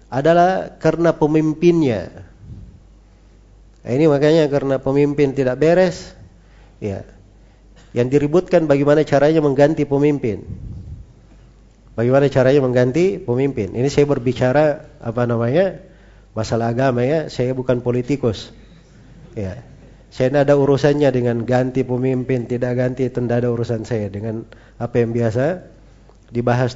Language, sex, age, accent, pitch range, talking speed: Indonesian, male, 40-59, native, 115-155 Hz, 110 wpm